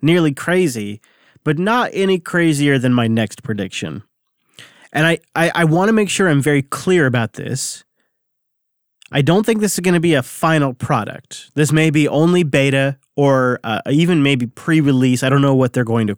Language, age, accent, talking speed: English, 30-49, American, 190 wpm